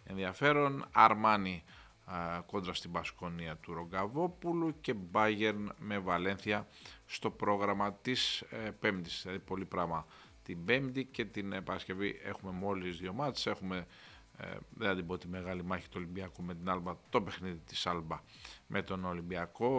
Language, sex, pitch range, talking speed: Greek, male, 85-100 Hz, 150 wpm